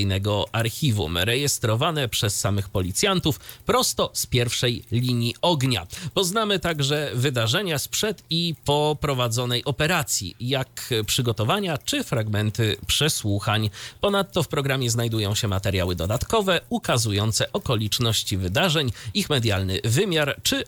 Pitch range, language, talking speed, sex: 110-150 Hz, Polish, 105 wpm, male